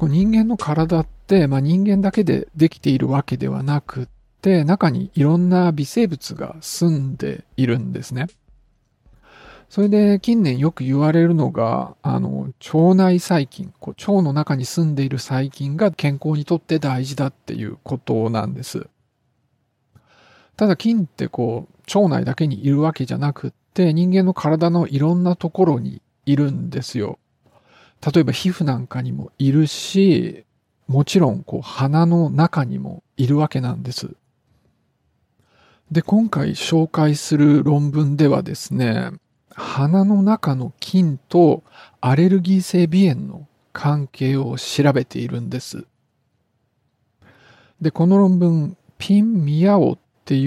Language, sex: Japanese, male